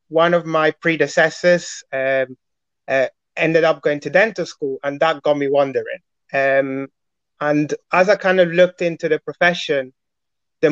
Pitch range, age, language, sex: 140-170 Hz, 30-49, English, male